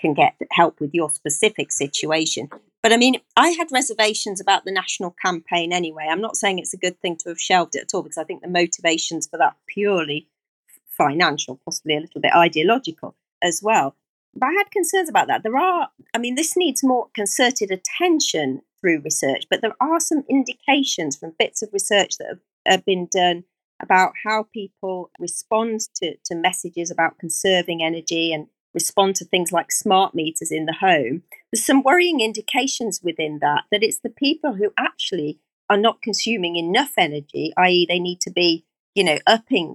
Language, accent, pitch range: English, British, 160-215 Hz